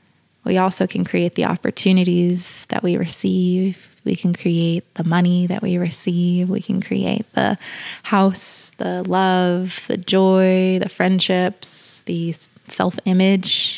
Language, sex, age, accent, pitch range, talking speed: English, female, 20-39, American, 180-205 Hz, 130 wpm